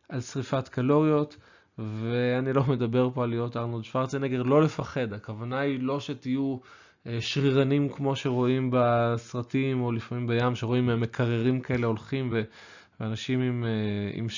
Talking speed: 130 wpm